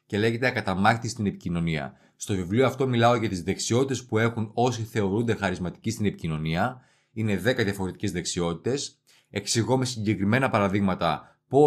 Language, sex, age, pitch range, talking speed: Greek, male, 30-49, 100-130 Hz, 145 wpm